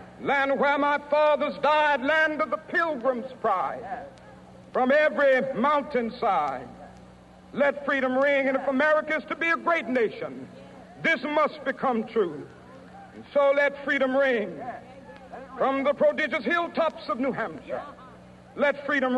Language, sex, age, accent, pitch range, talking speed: English, male, 60-79, American, 285-330 Hz, 135 wpm